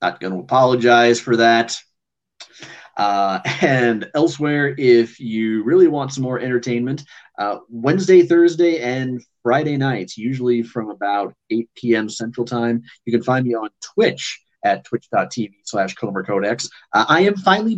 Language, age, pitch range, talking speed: English, 30-49, 110-135 Hz, 145 wpm